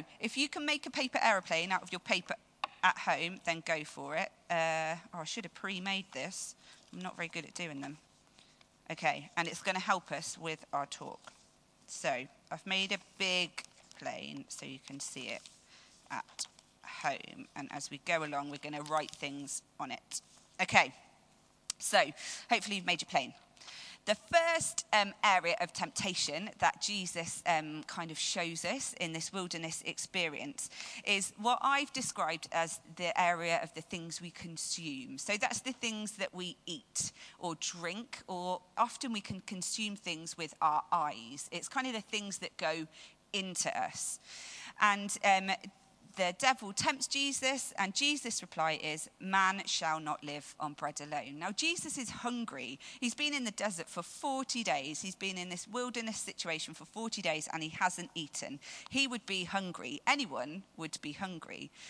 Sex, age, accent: female, 40-59, British